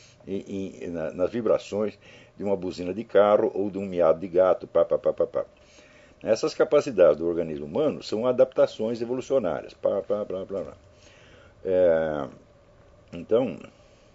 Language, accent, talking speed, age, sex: Portuguese, Brazilian, 95 wpm, 60-79, male